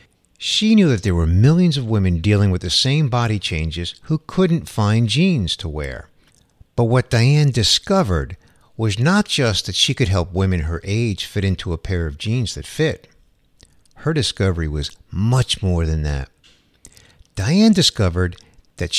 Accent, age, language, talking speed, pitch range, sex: American, 50-69, English, 165 wpm, 90-140 Hz, male